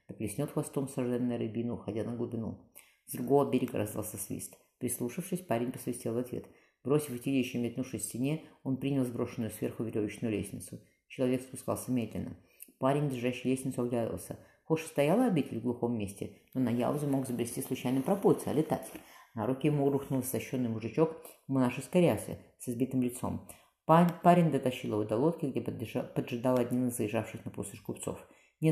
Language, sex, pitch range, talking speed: Russian, female, 115-140 Hz, 155 wpm